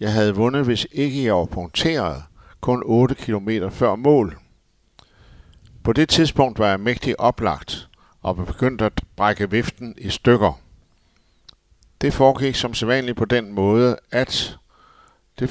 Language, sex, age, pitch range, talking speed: Danish, male, 60-79, 95-125 Hz, 140 wpm